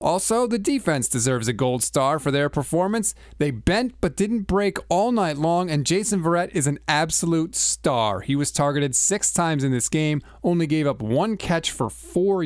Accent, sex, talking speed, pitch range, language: American, male, 195 wpm, 135-180 Hz, English